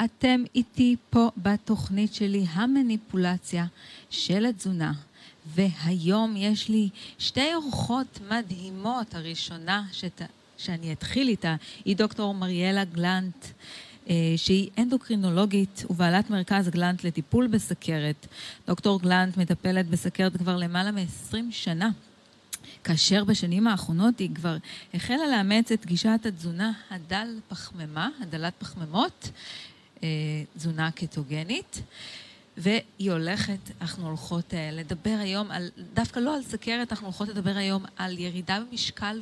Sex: female